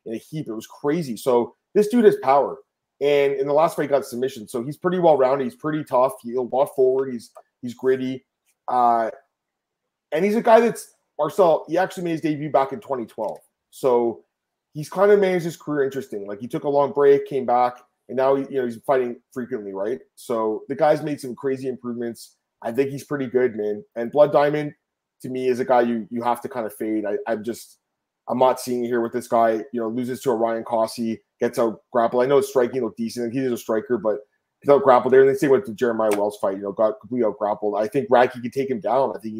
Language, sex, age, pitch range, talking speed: English, male, 20-39, 115-145 Hz, 240 wpm